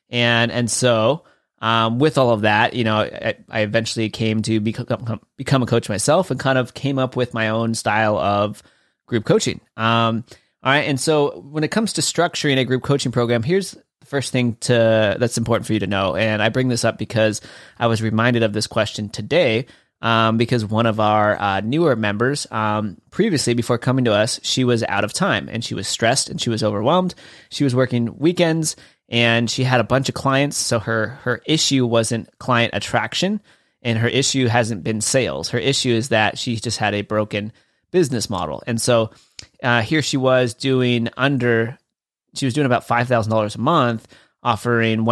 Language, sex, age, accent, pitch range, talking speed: English, male, 20-39, American, 110-130 Hz, 195 wpm